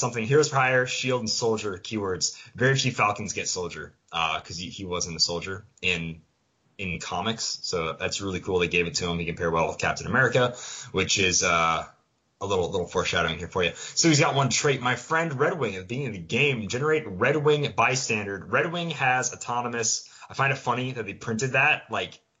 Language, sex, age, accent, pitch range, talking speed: English, male, 20-39, American, 95-135 Hz, 210 wpm